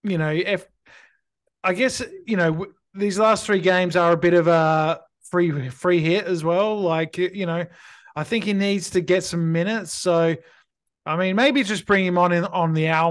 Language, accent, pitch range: English, Australian, 160-185 Hz